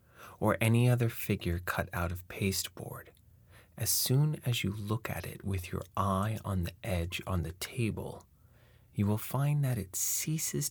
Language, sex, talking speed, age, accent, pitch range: English, male, 170 wpm, 30-49, American, 85-115 Hz